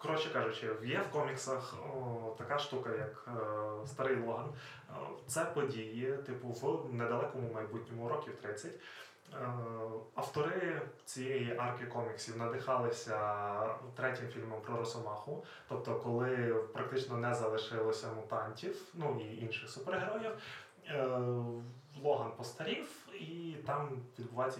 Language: Ukrainian